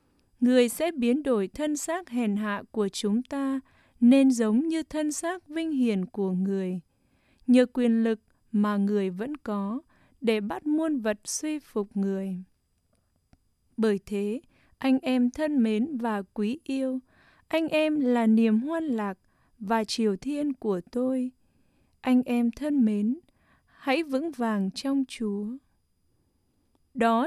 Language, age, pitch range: English, 20-39, 205-290 Hz